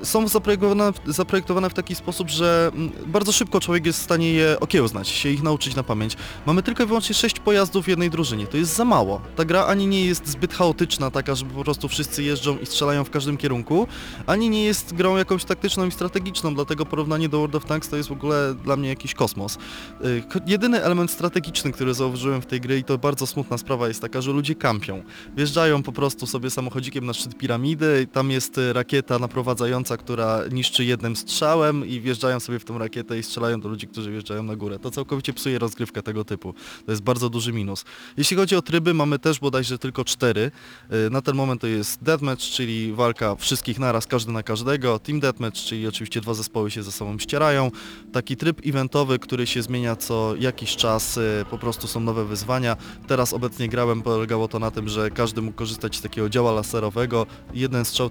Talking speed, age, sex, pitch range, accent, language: 200 wpm, 20-39, male, 115-155 Hz, native, Polish